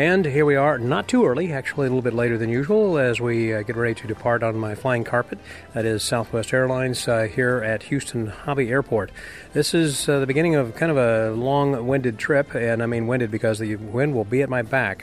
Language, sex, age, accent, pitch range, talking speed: English, male, 30-49, American, 115-135 Hz, 230 wpm